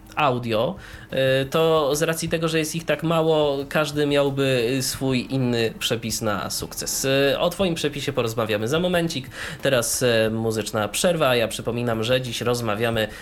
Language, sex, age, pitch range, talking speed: Polish, male, 20-39, 110-145 Hz, 140 wpm